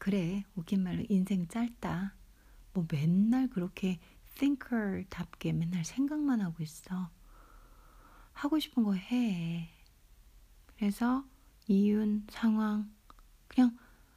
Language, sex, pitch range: Korean, female, 175-235 Hz